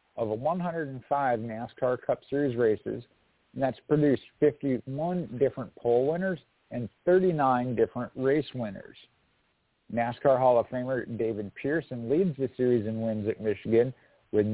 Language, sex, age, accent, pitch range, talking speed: English, male, 50-69, American, 110-135 Hz, 135 wpm